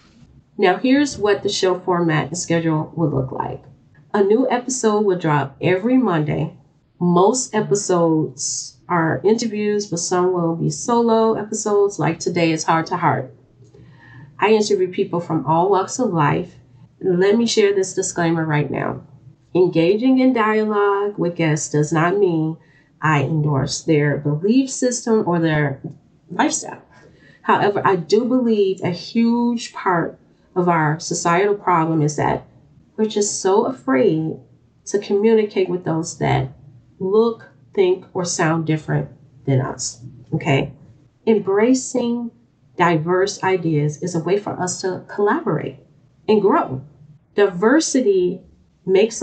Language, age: English, 30-49